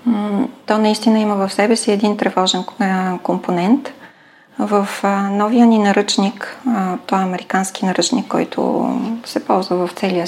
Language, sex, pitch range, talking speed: Bulgarian, female, 200-245 Hz, 130 wpm